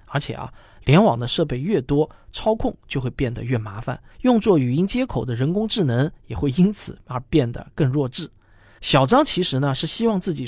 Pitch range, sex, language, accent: 125-195 Hz, male, Chinese, native